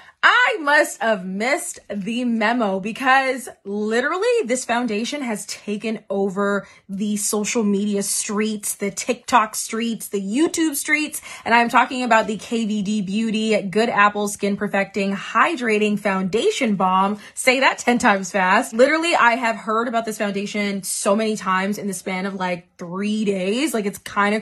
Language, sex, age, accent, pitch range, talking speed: English, female, 20-39, American, 205-245 Hz, 155 wpm